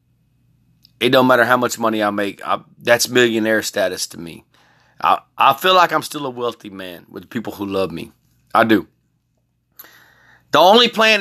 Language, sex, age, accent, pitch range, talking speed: English, male, 30-49, American, 120-150 Hz, 175 wpm